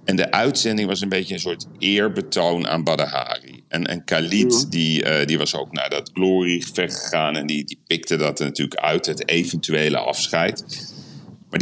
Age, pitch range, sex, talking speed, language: 40-59, 85-105 Hz, male, 185 wpm, Dutch